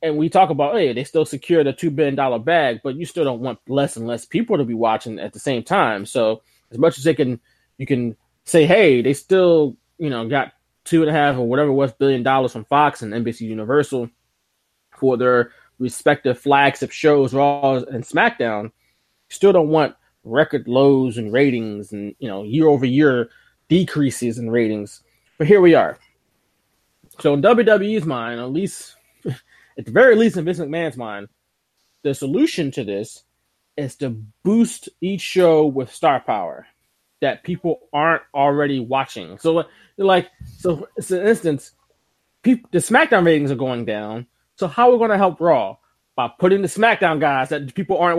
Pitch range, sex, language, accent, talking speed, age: 125-170 Hz, male, English, American, 180 wpm, 20-39